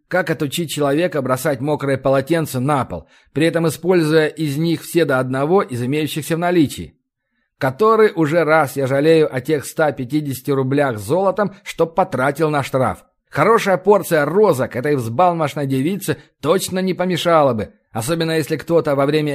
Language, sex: Russian, male